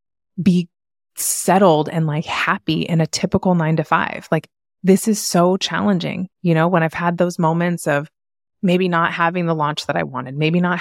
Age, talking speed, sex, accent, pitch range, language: 20-39, 190 wpm, female, American, 155-190 Hz, English